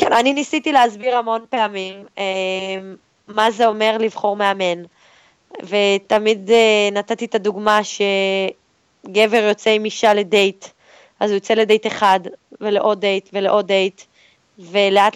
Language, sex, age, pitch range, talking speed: Hebrew, female, 20-39, 200-230 Hz, 125 wpm